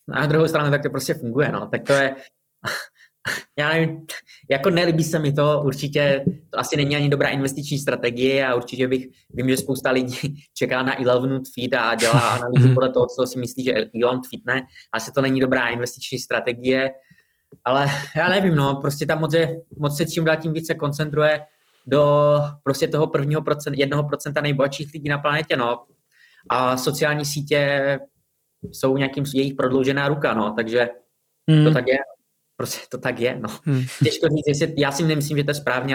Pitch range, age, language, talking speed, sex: 125-145 Hz, 20-39, Czech, 180 wpm, male